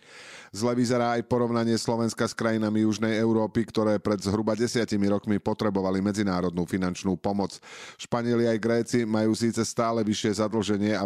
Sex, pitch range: male, 95-115 Hz